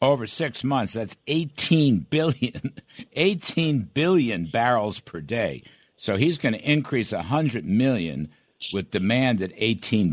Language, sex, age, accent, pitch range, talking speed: English, male, 60-79, American, 100-145 Hz, 130 wpm